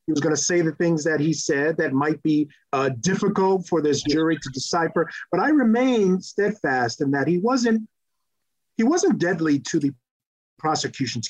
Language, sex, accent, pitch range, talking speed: English, male, American, 155-210 Hz, 175 wpm